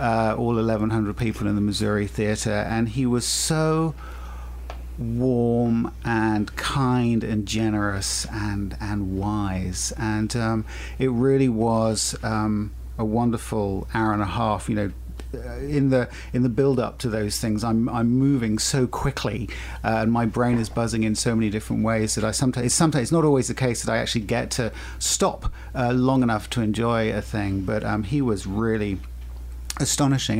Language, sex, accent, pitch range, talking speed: English, male, British, 105-135 Hz, 170 wpm